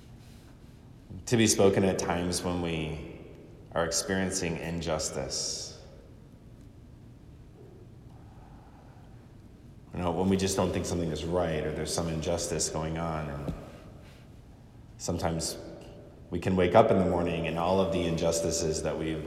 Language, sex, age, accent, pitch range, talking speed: English, male, 20-39, American, 80-105 Hz, 130 wpm